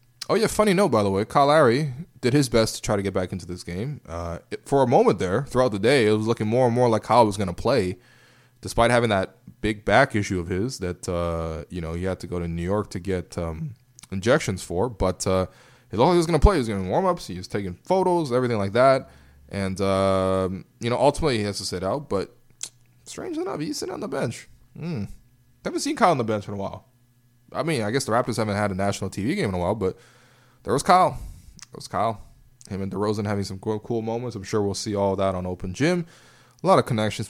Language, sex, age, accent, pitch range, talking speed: English, male, 20-39, American, 95-120 Hz, 250 wpm